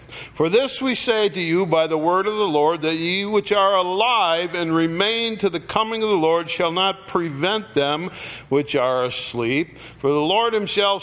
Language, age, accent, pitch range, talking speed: English, 50-69, American, 135-175 Hz, 195 wpm